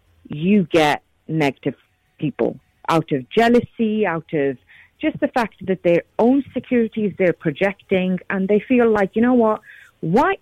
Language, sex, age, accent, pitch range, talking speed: English, female, 40-59, British, 160-230 Hz, 150 wpm